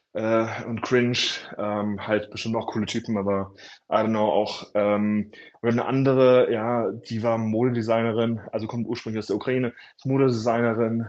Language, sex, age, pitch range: German, male, 20-39, 110-130 Hz